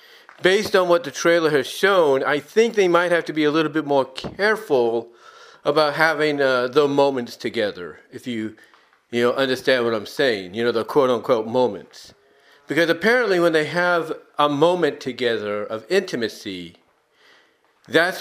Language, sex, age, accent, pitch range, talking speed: English, male, 40-59, American, 130-170 Hz, 160 wpm